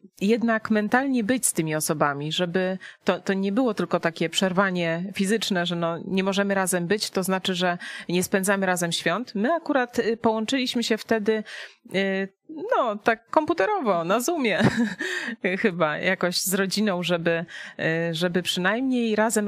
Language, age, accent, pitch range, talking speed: Polish, 30-49, native, 175-225 Hz, 140 wpm